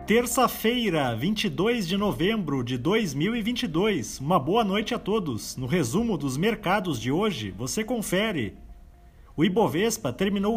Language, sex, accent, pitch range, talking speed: Portuguese, male, Brazilian, 160-225 Hz, 125 wpm